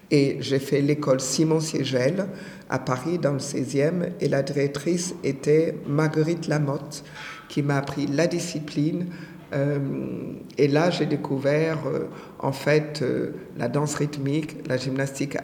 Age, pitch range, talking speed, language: 60-79, 140-155 Hz, 130 wpm, French